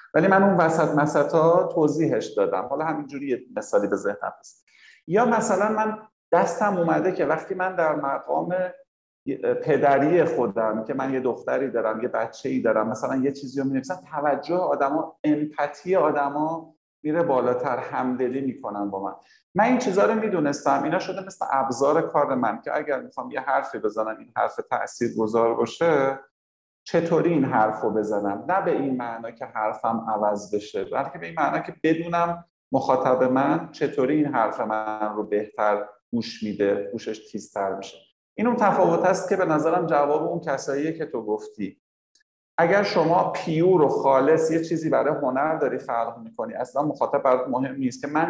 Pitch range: 115-170 Hz